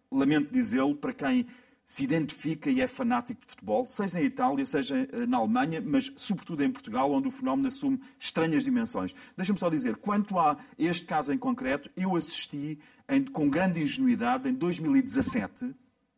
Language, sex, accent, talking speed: Portuguese, male, Portuguese, 165 wpm